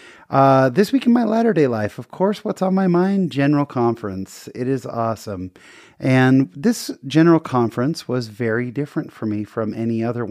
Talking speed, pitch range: 175 wpm, 115-155 Hz